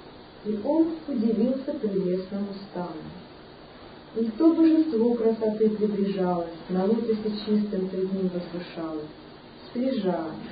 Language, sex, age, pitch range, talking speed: Russian, male, 40-59, 175-230 Hz, 95 wpm